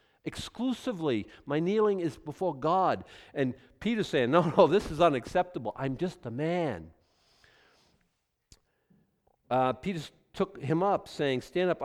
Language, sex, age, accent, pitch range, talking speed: English, male, 50-69, American, 120-175 Hz, 130 wpm